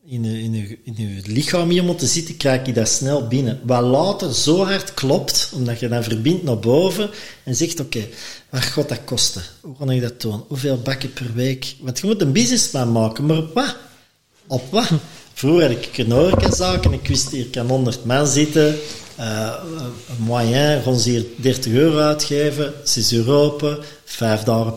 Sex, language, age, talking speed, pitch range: male, Dutch, 40-59, 190 wpm, 115-150 Hz